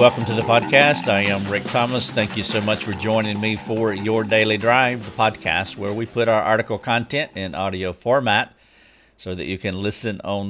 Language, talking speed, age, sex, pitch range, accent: English, 205 wpm, 50-69, male, 95-115 Hz, American